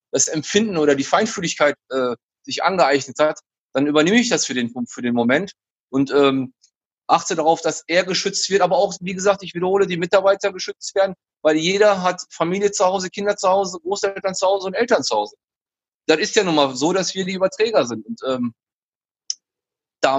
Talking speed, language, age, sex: 195 wpm, German, 30-49, male